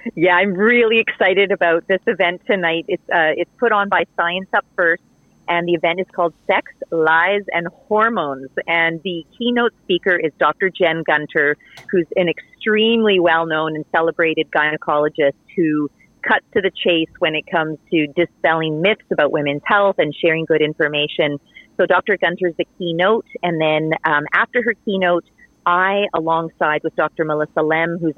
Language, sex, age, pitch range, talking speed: English, female, 40-59, 160-200 Hz, 165 wpm